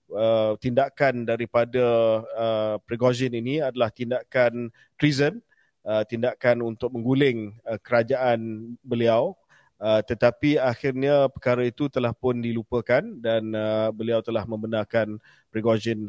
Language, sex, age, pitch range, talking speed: Malay, male, 30-49, 115-135 Hz, 110 wpm